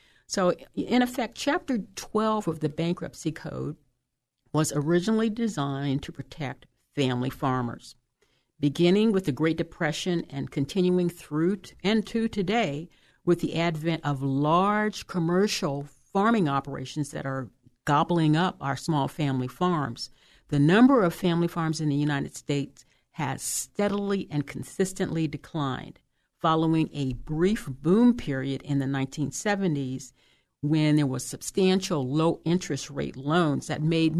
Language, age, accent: English, 50-69, American